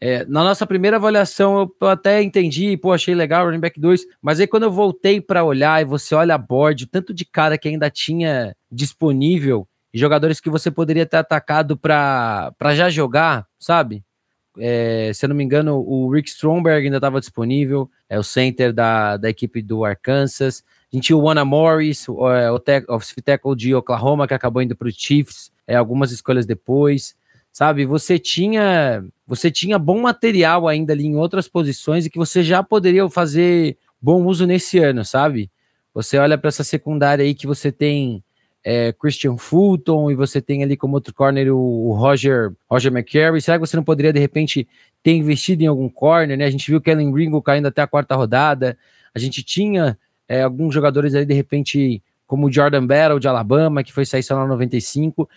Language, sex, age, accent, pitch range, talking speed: Portuguese, male, 20-39, Brazilian, 130-160 Hz, 195 wpm